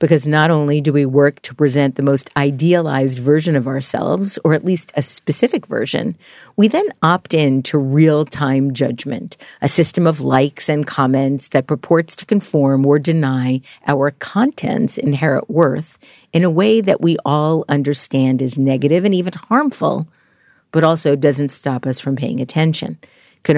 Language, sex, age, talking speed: English, female, 50-69, 165 wpm